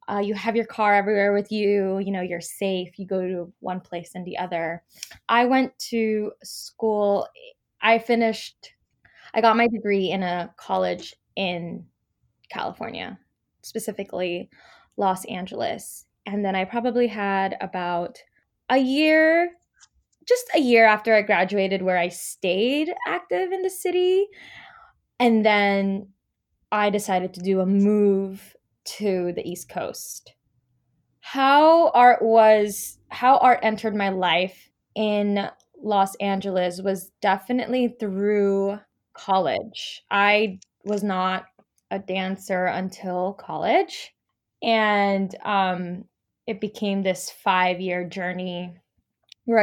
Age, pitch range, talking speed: 20-39, 185-225 Hz, 125 wpm